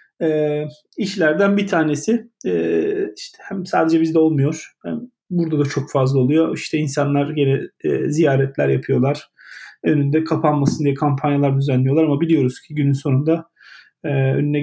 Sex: male